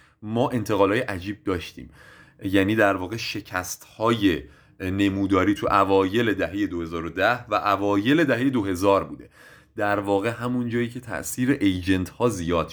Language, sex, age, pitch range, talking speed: Persian, male, 30-49, 90-120 Hz, 125 wpm